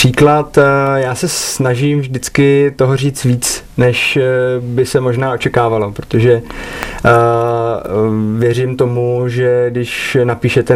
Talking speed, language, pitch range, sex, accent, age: 105 wpm, Czech, 120-130 Hz, male, native, 20-39